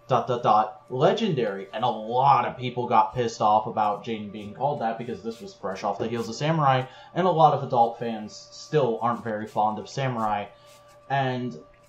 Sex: male